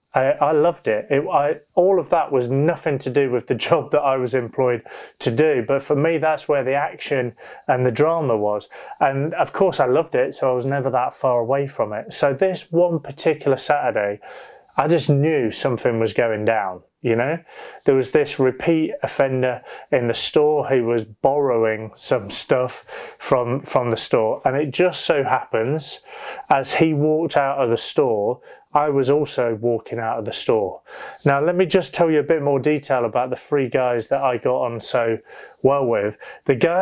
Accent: British